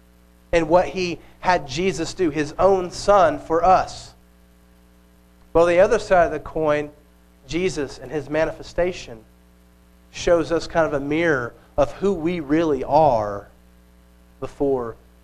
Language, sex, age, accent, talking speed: English, male, 40-59, American, 135 wpm